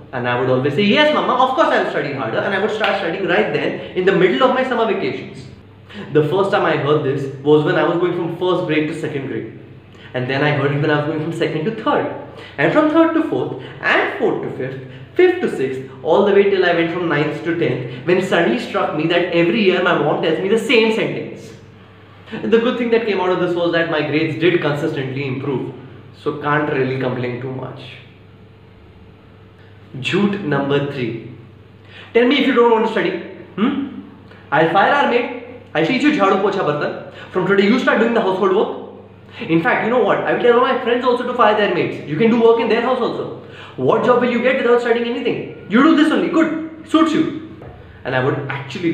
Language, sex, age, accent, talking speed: Hindi, male, 20-39, native, 230 wpm